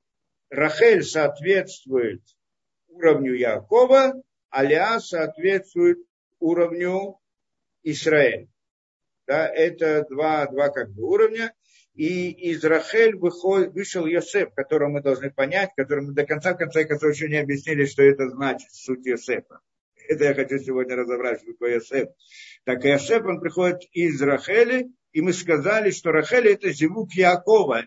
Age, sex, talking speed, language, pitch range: 50-69, male, 135 wpm, Russian, 155-210 Hz